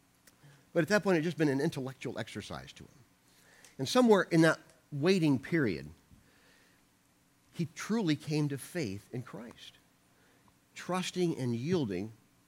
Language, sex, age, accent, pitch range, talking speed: English, male, 50-69, American, 115-160 Hz, 140 wpm